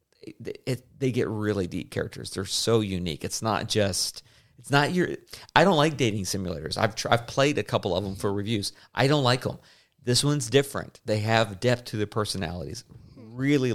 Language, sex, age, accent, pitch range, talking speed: English, male, 40-59, American, 100-120 Hz, 195 wpm